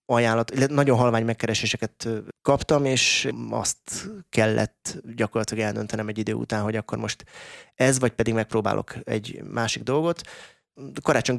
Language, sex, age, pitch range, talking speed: Hungarian, male, 20-39, 110-125 Hz, 125 wpm